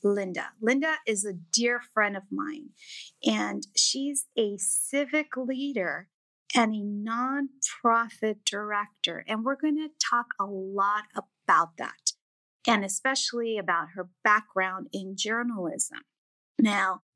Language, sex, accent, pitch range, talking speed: English, female, American, 195-270 Hz, 120 wpm